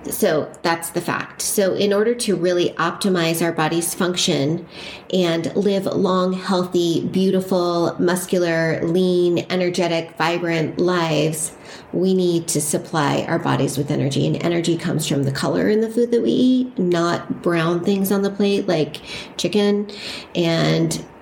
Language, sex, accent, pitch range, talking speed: English, female, American, 160-185 Hz, 145 wpm